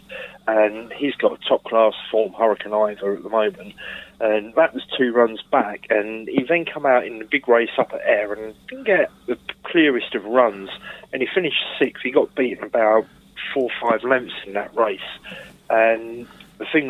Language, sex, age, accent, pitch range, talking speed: English, male, 30-49, British, 110-135 Hz, 190 wpm